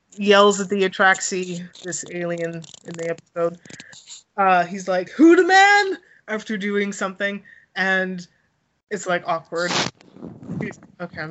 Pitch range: 175-205 Hz